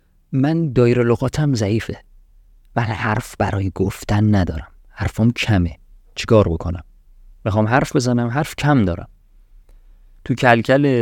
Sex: male